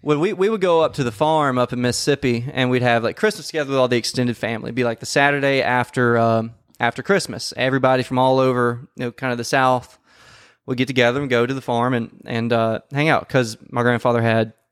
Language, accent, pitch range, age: English, American, 120-140 Hz, 20-39